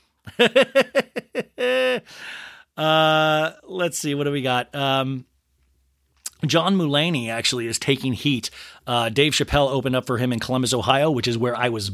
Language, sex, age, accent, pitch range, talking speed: English, male, 30-49, American, 115-150 Hz, 145 wpm